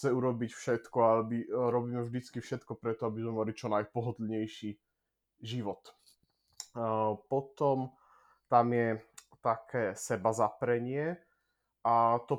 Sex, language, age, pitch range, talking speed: male, Slovak, 20-39, 110-120 Hz, 105 wpm